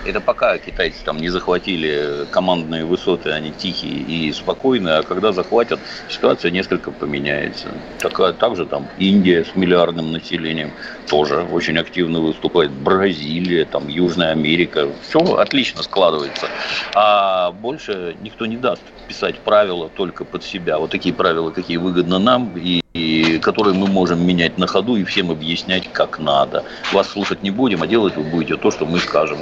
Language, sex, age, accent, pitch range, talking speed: Russian, male, 50-69, native, 80-95 Hz, 155 wpm